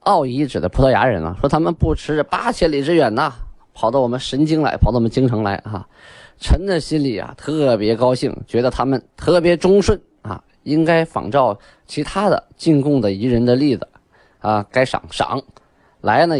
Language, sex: Chinese, male